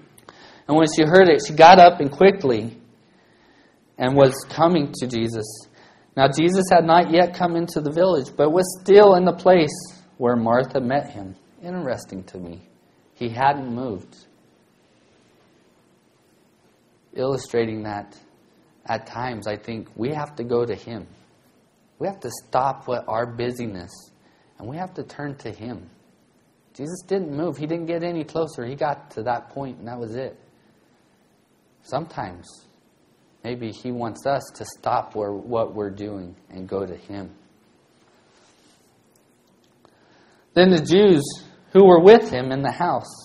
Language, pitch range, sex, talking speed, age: English, 115-170 Hz, male, 150 wpm, 30-49